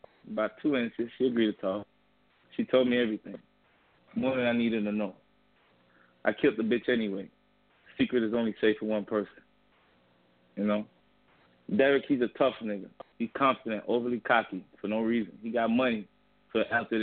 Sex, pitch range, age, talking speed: male, 100-120 Hz, 20-39, 175 wpm